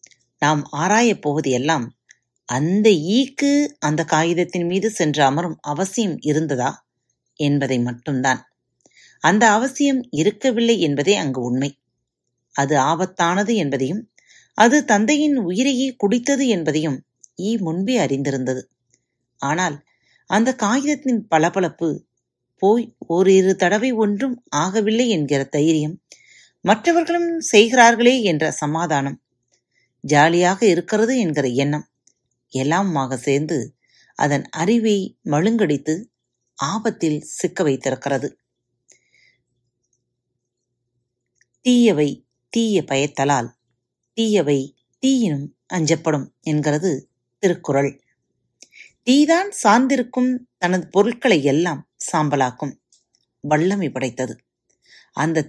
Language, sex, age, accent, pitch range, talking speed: Tamil, female, 30-49, native, 140-220 Hz, 80 wpm